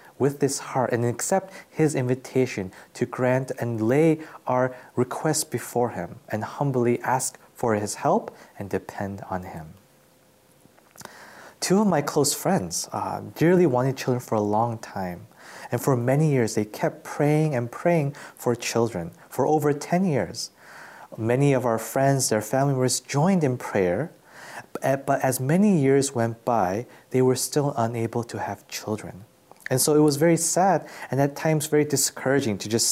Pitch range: 115-145 Hz